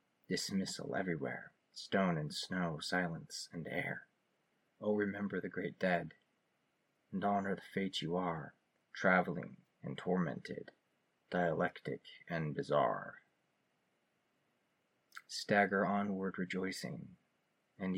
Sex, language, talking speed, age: male, English, 95 wpm, 30-49